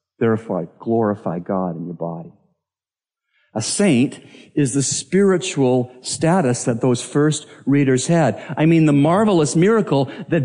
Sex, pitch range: male, 110-155 Hz